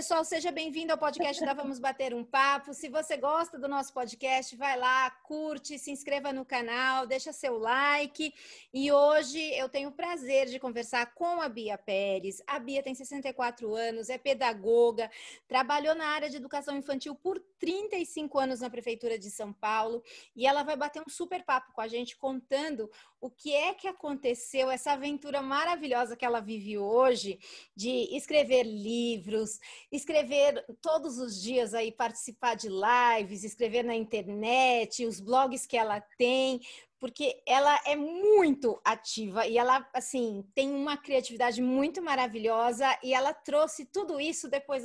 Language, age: Portuguese, 30-49